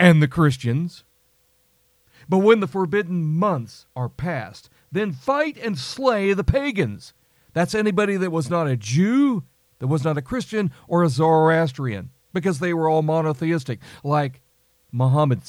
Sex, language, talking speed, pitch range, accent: male, English, 145 wpm, 140-210 Hz, American